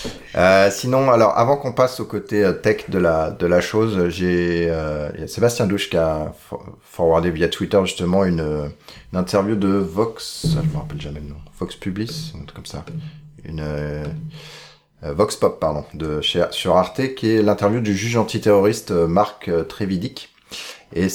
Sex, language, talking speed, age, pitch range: male, French, 175 wpm, 30-49, 75-105 Hz